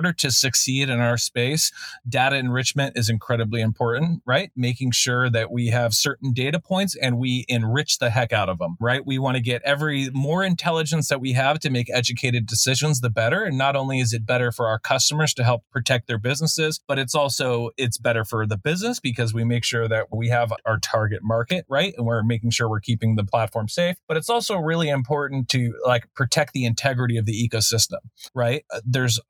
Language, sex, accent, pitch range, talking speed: English, male, American, 115-140 Hz, 205 wpm